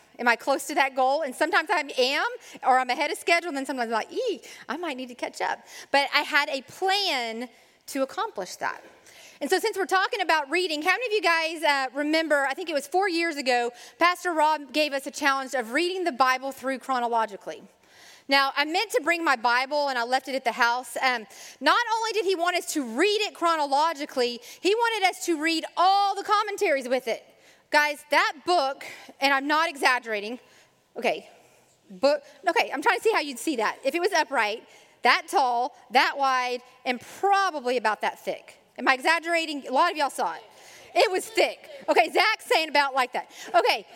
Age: 30-49